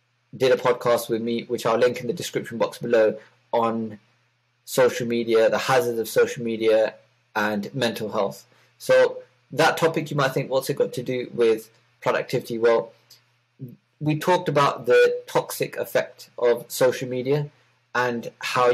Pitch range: 115-140 Hz